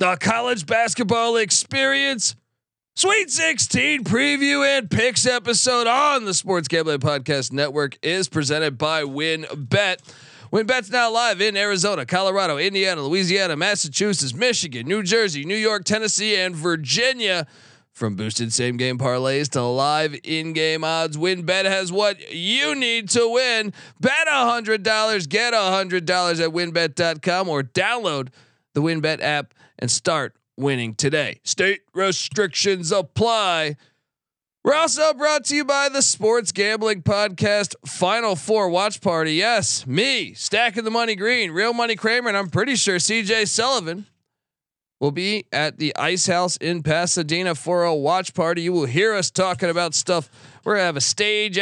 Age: 30-49